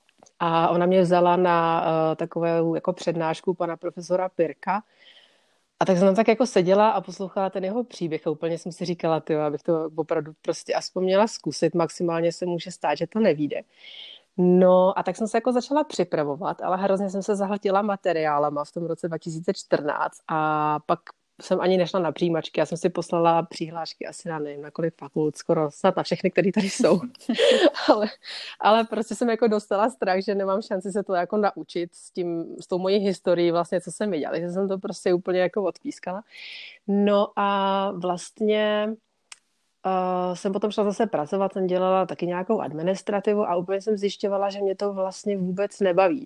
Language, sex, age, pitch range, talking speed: Slovak, female, 30-49, 170-200 Hz, 185 wpm